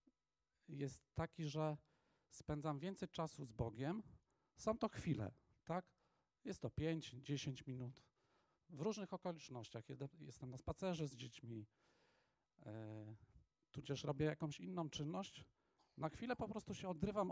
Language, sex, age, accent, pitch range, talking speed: Polish, male, 40-59, native, 140-180 Hz, 125 wpm